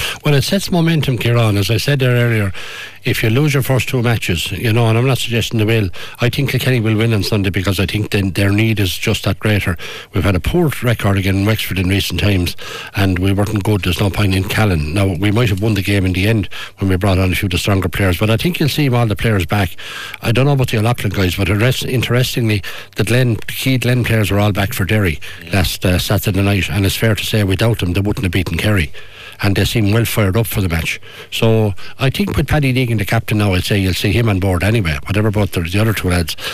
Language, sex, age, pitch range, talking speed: English, male, 60-79, 95-115 Hz, 265 wpm